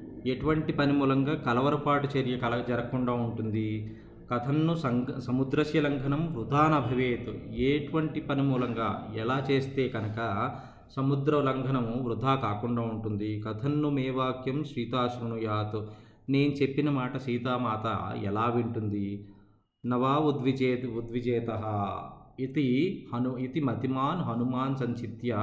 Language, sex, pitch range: Telugu, male, 115-135 Hz